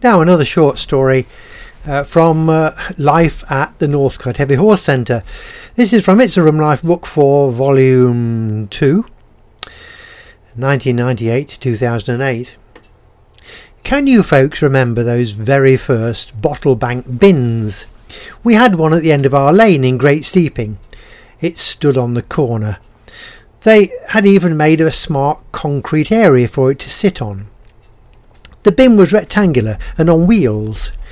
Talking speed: 140 wpm